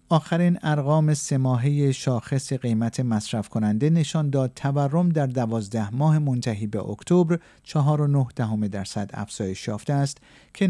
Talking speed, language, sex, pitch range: 145 wpm, Persian, male, 115-155 Hz